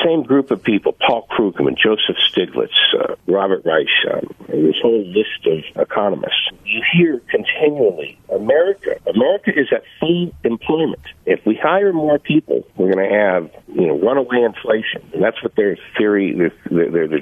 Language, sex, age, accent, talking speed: English, male, 50-69, American, 160 wpm